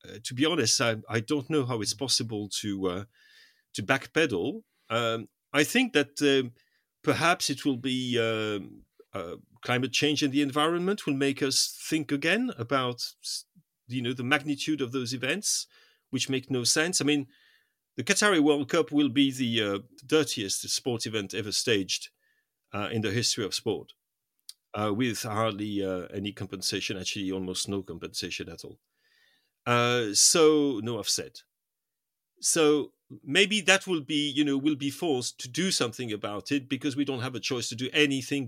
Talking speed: 170 wpm